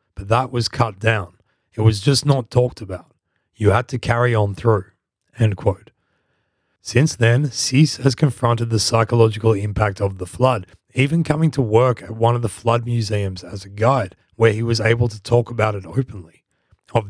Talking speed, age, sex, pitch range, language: 185 wpm, 30-49, male, 105-130 Hz, English